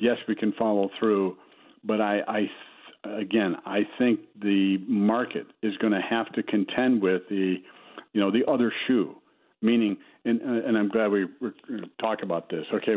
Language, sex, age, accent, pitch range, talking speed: English, male, 60-79, American, 100-125 Hz, 170 wpm